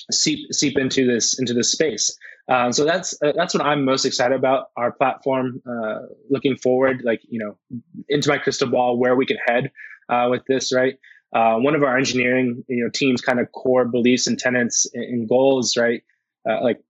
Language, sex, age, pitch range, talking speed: English, male, 20-39, 120-135 Hz, 200 wpm